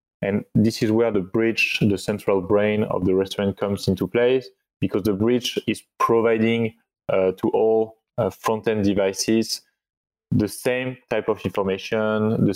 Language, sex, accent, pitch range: English, male, French, 95-110 Hz